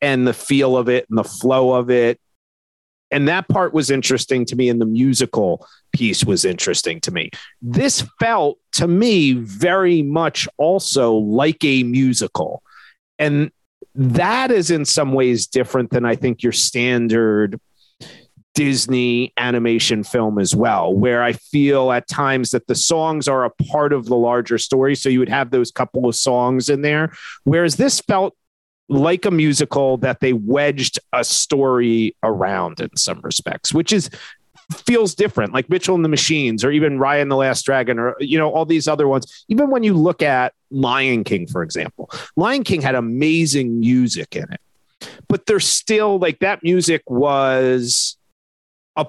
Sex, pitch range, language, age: male, 120-155 Hz, English, 40-59